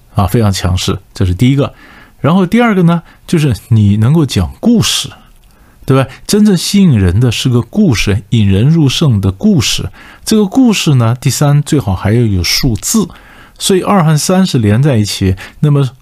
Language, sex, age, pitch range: Chinese, male, 50-69, 100-135 Hz